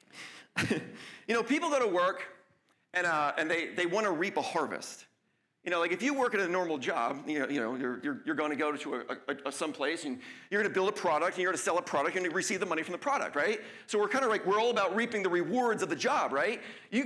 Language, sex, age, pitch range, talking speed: English, male, 40-59, 170-240 Hz, 275 wpm